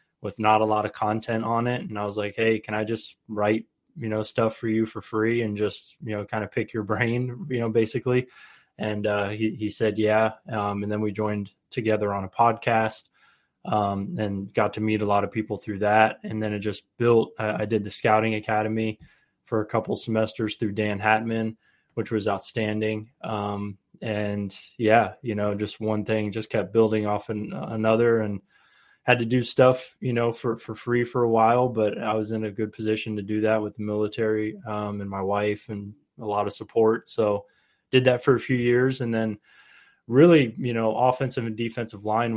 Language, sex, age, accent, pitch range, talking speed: English, male, 20-39, American, 105-115 Hz, 210 wpm